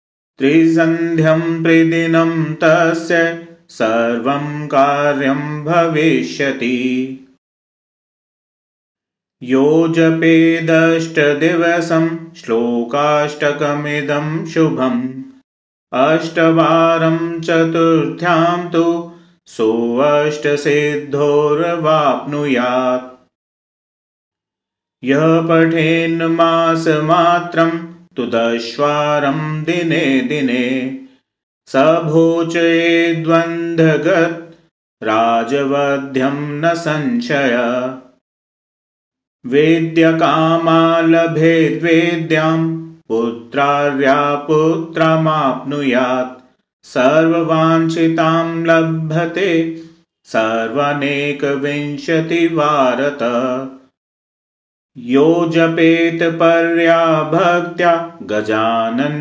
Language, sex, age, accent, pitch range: Hindi, male, 30-49, native, 135-165 Hz